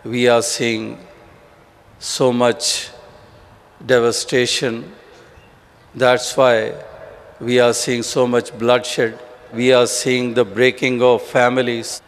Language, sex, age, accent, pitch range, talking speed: Hindi, male, 50-69, native, 120-140 Hz, 105 wpm